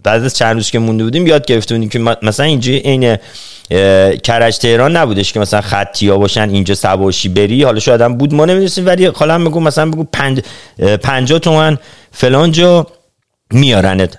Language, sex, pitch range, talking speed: Persian, male, 120-175 Hz, 165 wpm